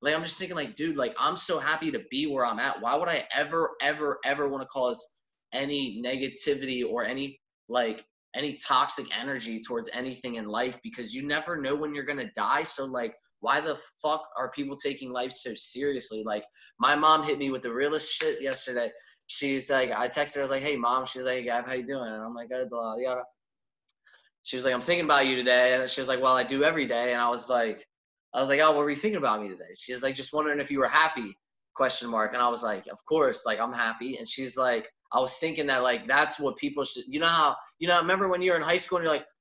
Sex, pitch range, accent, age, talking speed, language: male, 130-185 Hz, American, 20-39, 255 wpm, English